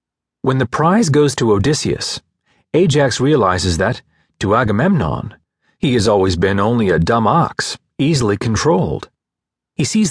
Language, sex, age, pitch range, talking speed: English, male, 40-59, 110-145 Hz, 135 wpm